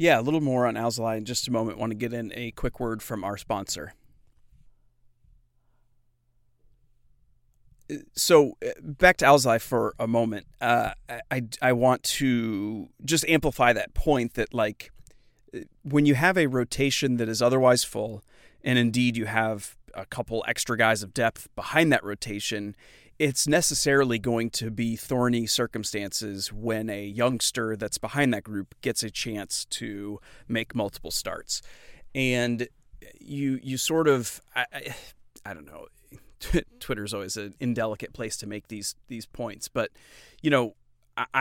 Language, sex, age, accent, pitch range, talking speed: English, male, 30-49, American, 110-130 Hz, 150 wpm